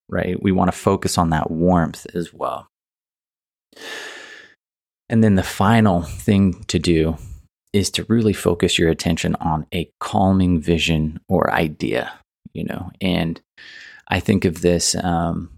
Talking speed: 145 wpm